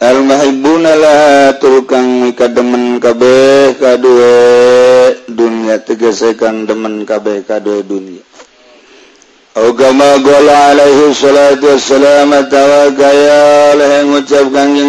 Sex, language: male, Indonesian